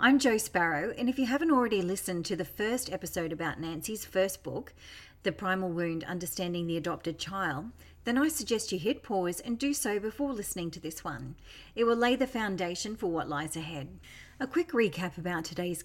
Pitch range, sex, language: 165-220 Hz, female, English